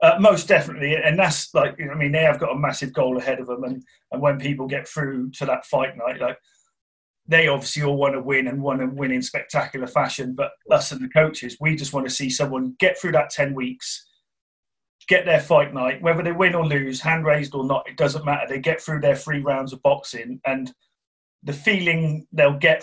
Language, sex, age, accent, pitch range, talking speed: English, male, 30-49, British, 135-160 Hz, 230 wpm